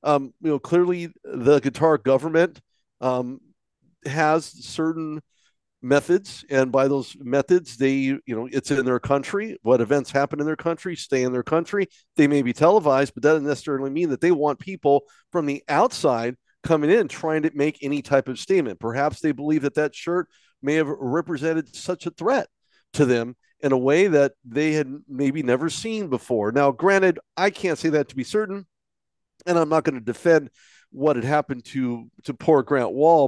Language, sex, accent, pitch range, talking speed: English, male, American, 130-155 Hz, 190 wpm